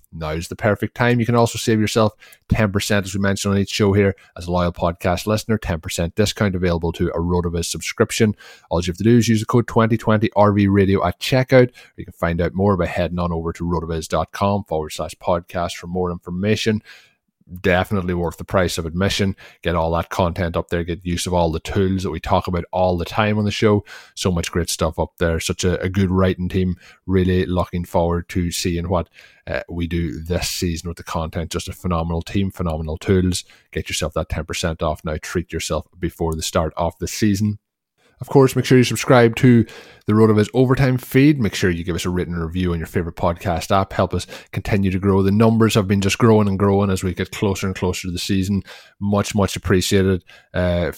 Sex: male